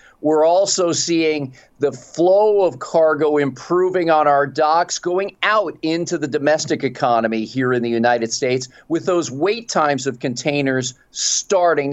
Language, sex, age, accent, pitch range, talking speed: English, male, 40-59, American, 135-185 Hz, 145 wpm